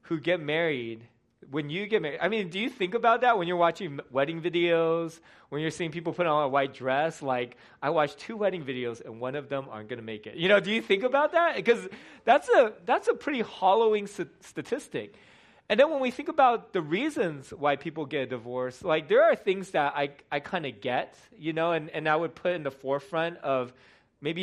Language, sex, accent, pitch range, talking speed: English, male, American, 135-185 Hz, 230 wpm